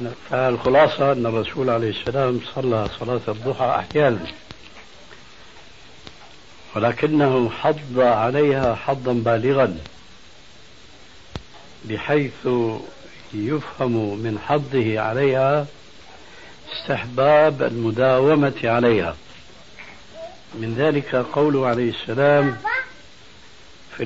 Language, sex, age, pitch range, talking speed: Arabic, male, 70-89, 120-150 Hz, 70 wpm